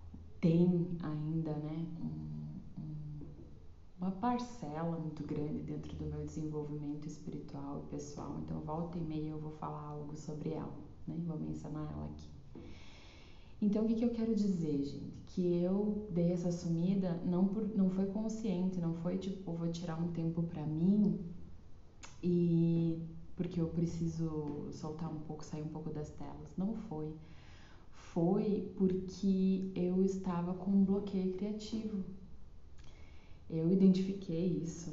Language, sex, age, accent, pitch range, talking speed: Portuguese, female, 20-39, Brazilian, 150-190 Hz, 145 wpm